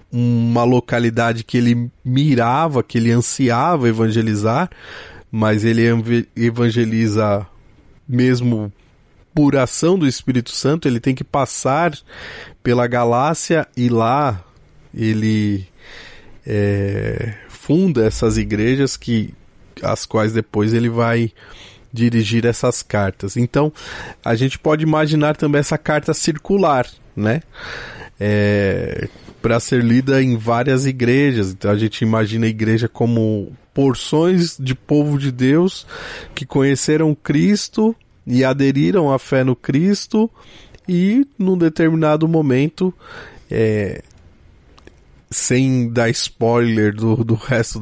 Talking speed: 110 wpm